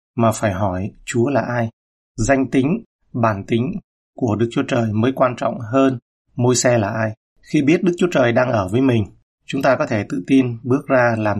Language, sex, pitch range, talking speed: Vietnamese, male, 110-135 Hz, 210 wpm